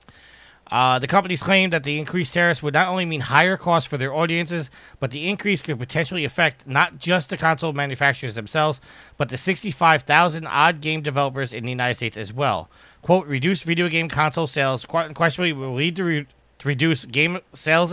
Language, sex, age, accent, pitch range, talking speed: English, male, 30-49, American, 135-175 Hz, 175 wpm